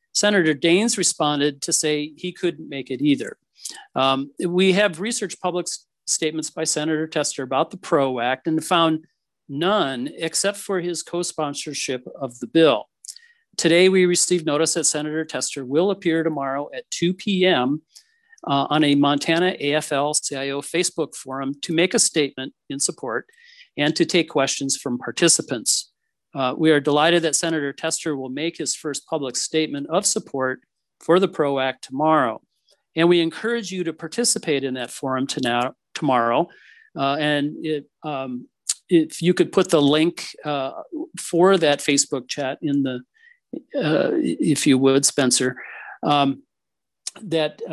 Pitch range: 140-180 Hz